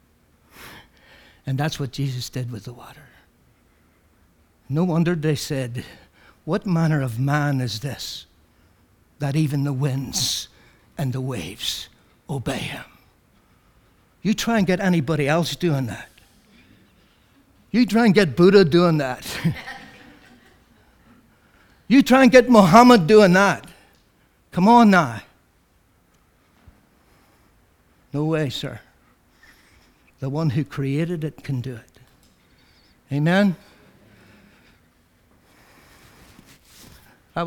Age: 60-79